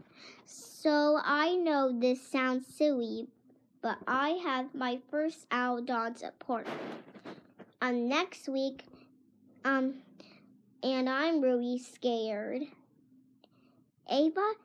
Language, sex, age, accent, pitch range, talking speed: English, male, 10-29, American, 255-305 Hz, 95 wpm